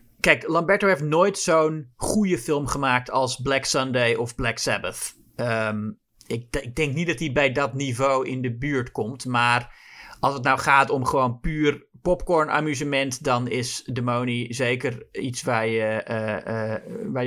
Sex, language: male, Dutch